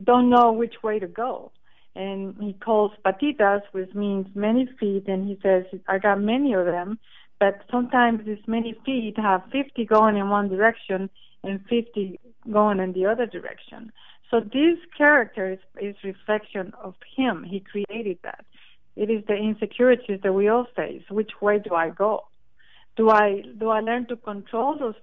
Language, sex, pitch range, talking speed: English, female, 195-230 Hz, 175 wpm